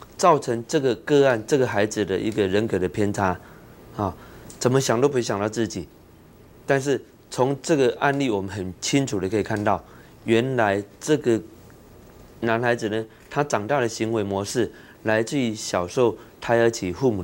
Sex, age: male, 20-39